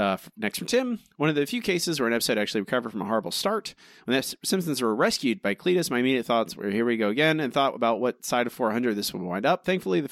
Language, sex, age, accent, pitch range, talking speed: English, male, 30-49, American, 105-140 Hz, 275 wpm